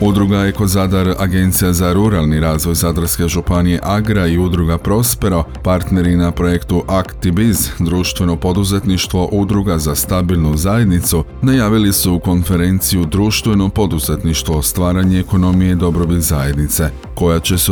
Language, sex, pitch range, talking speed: Croatian, male, 80-100 Hz, 125 wpm